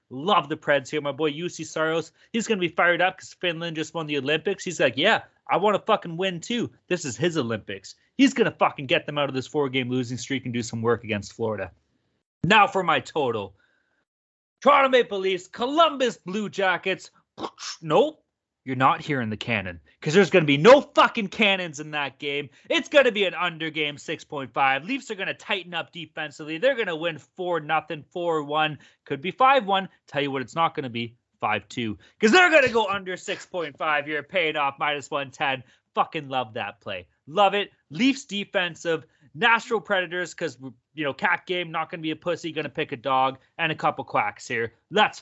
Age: 30-49